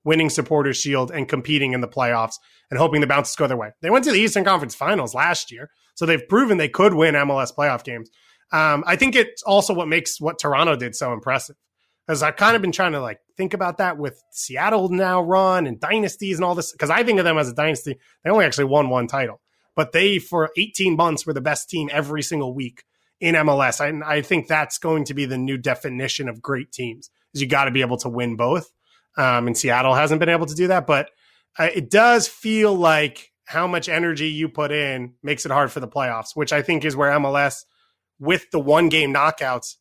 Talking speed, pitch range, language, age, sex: 230 wpm, 135-170 Hz, English, 30-49, male